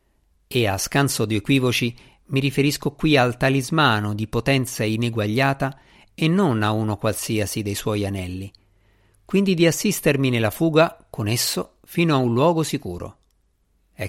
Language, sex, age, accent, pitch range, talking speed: Italian, male, 50-69, native, 105-145 Hz, 145 wpm